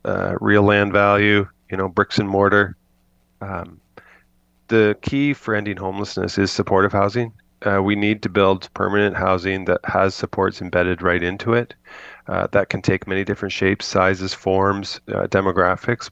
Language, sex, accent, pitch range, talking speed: English, male, American, 95-105 Hz, 160 wpm